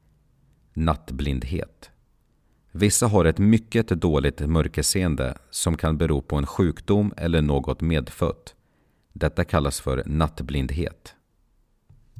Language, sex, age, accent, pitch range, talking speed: Swedish, male, 40-59, native, 75-100 Hz, 100 wpm